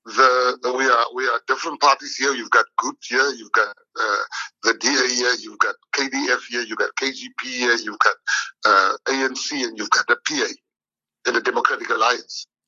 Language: English